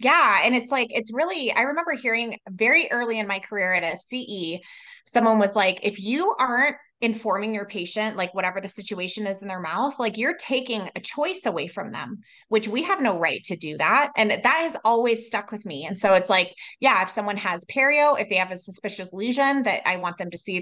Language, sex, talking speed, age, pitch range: English, female, 225 wpm, 20-39, 195-255 Hz